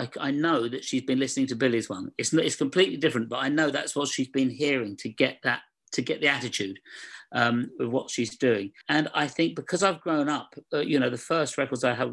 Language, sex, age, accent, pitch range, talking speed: English, male, 50-69, British, 130-155 Hz, 235 wpm